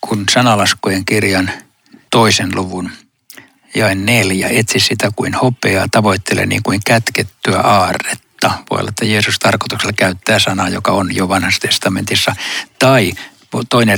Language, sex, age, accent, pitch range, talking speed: Finnish, male, 60-79, native, 100-120 Hz, 130 wpm